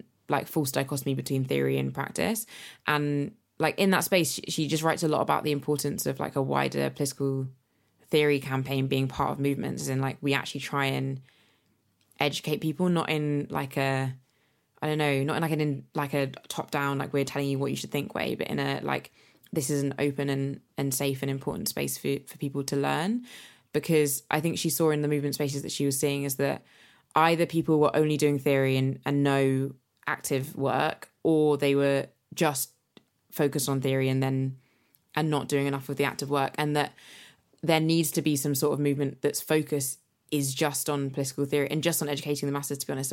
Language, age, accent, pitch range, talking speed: English, 20-39, British, 135-150 Hz, 210 wpm